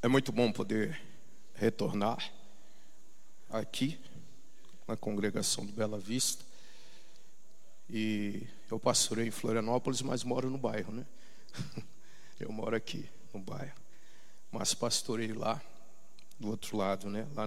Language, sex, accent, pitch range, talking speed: Portuguese, male, Brazilian, 105-120 Hz, 115 wpm